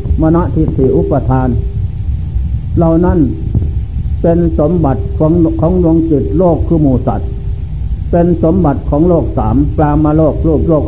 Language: Thai